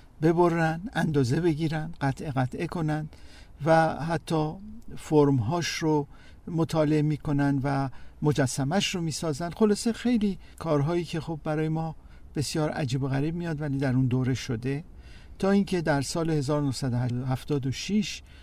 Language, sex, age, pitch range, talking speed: Persian, male, 50-69, 130-155 Hz, 125 wpm